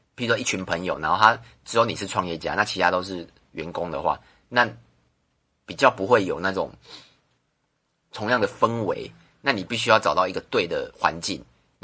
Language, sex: Chinese, male